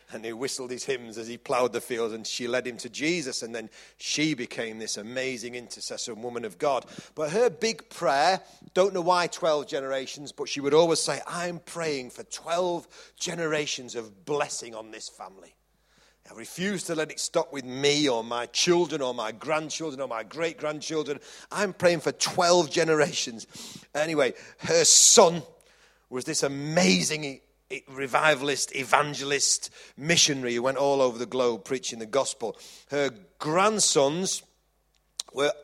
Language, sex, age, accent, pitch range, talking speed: English, male, 40-59, British, 130-165 Hz, 160 wpm